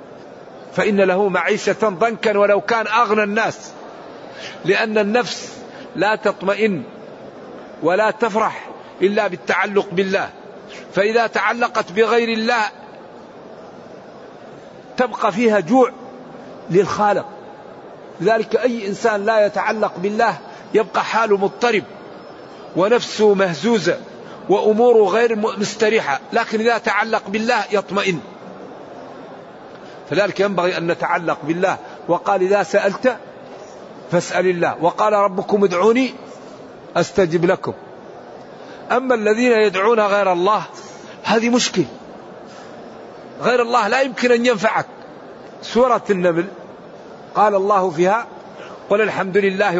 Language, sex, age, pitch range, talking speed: Arabic, male, 50-69, 190-225 Hz, 95 wpm